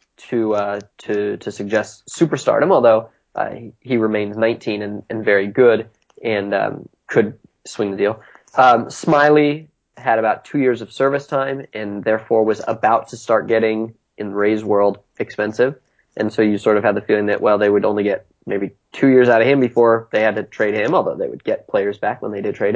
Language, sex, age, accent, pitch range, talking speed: English, male, 20-39, American, 105-125 Hz, 205 wpm